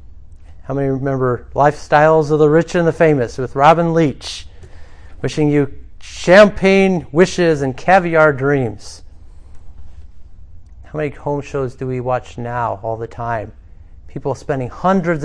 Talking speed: 135 wpm